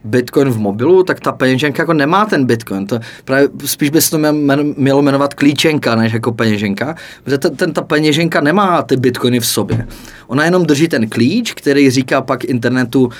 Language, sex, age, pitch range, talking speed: Czech, male, 20-39, 125-145 Hz, 195 wpm